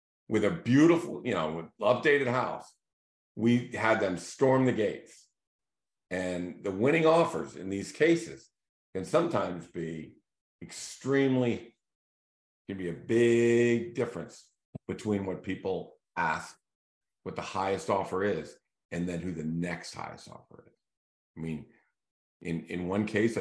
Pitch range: 90-120 Hz